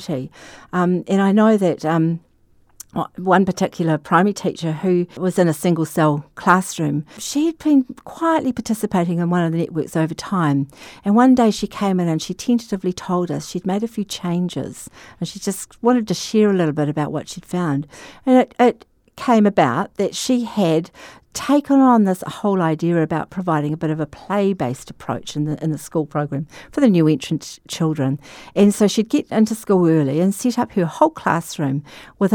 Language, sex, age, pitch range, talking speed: English, female, 50-69, 160-220 Hz, 195 wpm